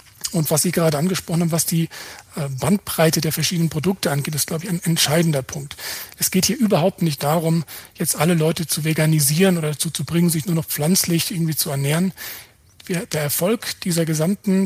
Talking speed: 185 wpm